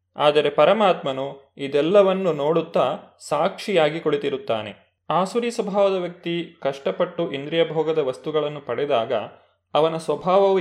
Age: 30-49